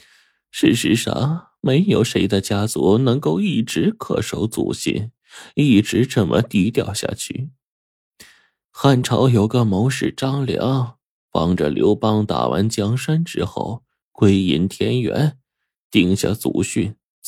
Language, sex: Chinese, male